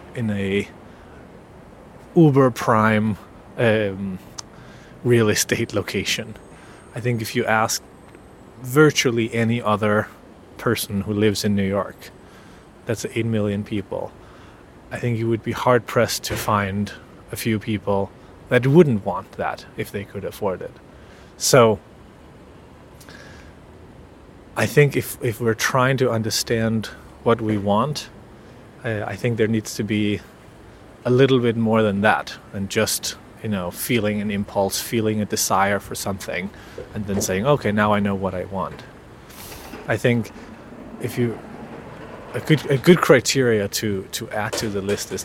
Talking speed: 140 wpm